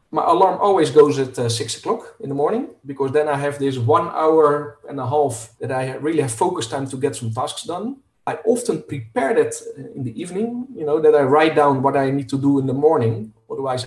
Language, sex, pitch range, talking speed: Bulgarian, male, 125-150 Hz, 235 wpm